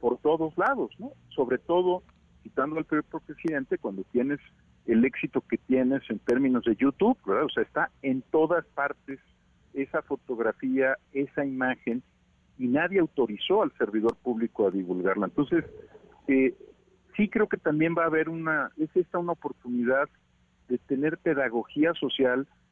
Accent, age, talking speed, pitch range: Mexican, 50-69, 150 wpm, 115-155 Hz